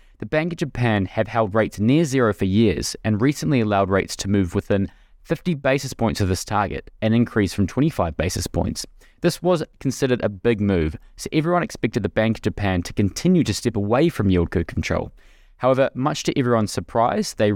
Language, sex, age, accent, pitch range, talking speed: English, male, 20-39, Australian, 100-140 Hz, 200 wpm